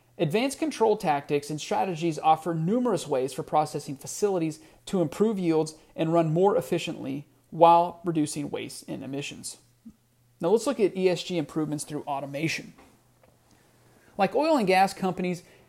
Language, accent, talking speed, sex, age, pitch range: English, American, 140 wpm, male, 40-59, 150-195 Hz